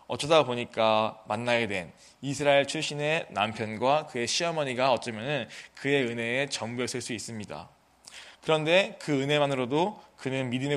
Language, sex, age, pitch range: Korean, male, 20-39, 120-160 Hz